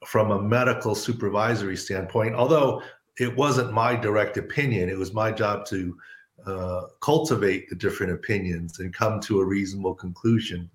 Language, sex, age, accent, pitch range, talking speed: English, male, 50-69, American, 100-125 Hz, 150 wpm